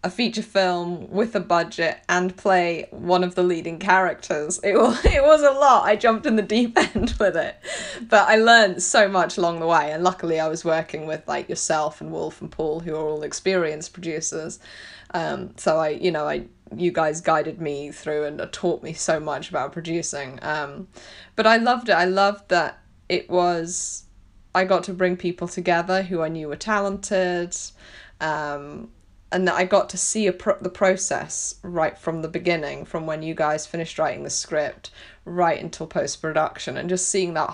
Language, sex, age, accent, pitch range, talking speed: English, female, 20-39, British, 155-185 Hz, 190 wpm